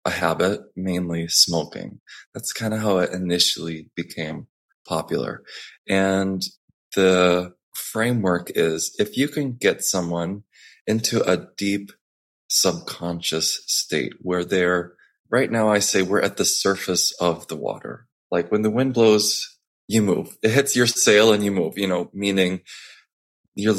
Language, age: English, 20-39